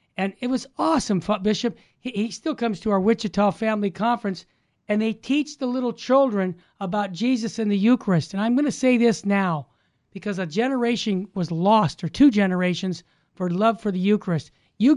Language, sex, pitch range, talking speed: English, male, 185-230 Hz, 180 wpm